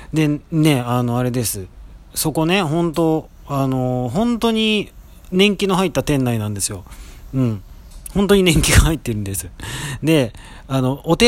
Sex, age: male, 40-59